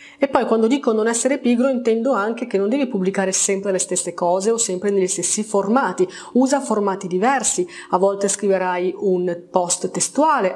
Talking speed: 175 wpm